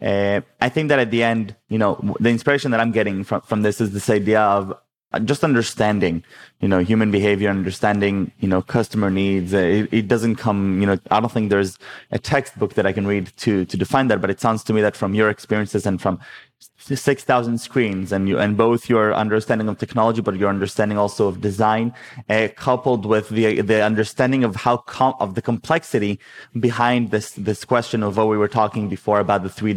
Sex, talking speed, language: male, 210 wpm, English